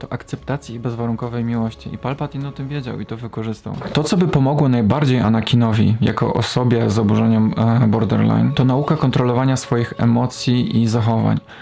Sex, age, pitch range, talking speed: male, 20-39, 115-130 Hz, 165 wpm